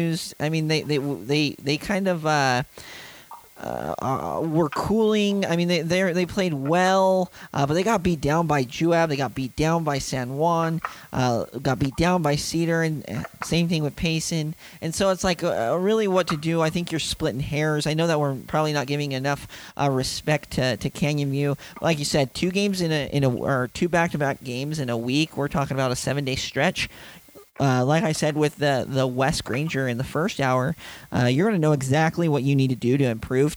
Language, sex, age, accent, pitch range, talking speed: English, male, 40-59, American, 135-165 Hz, 220 wpm